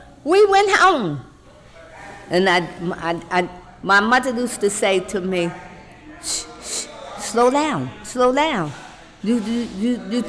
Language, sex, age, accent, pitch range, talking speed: English, female, 50-69, American, 195-280 Hz, 140 wpm